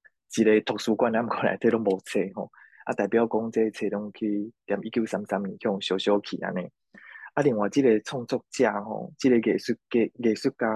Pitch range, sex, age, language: 105-120 Hz, male, 20-39, Chinese